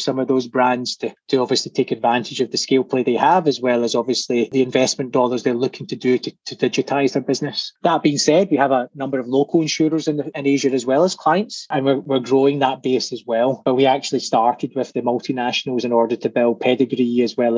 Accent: British